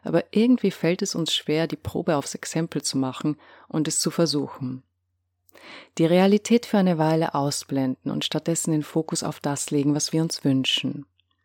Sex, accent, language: female, German, German